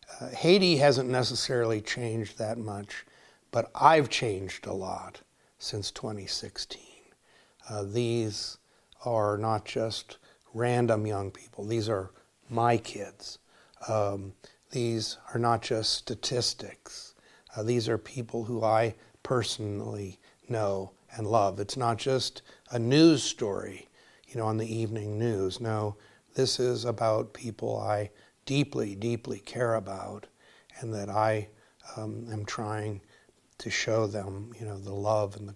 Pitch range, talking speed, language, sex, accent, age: 105-120 Hz, 135 wpm, English, male, American, 60-79